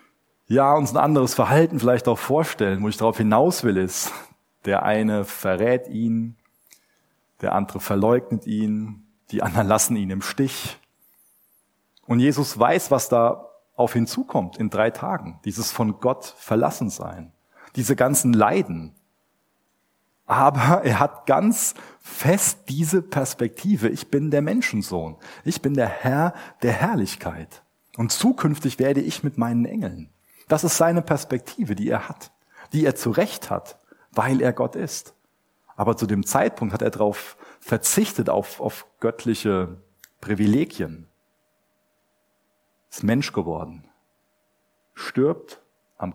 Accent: German